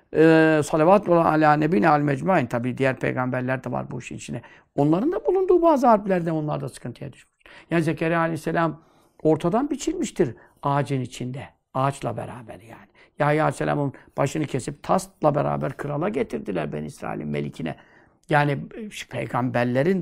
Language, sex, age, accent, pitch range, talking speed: Turkish, male, 60-79, native, 145-200 Hz, 140 wpm